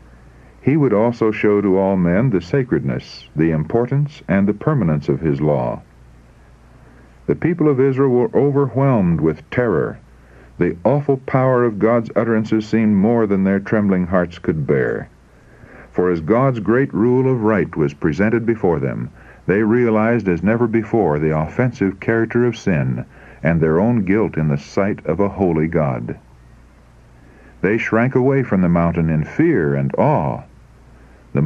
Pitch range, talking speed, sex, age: 75-120 Hz, 155 wpm, male, 60-79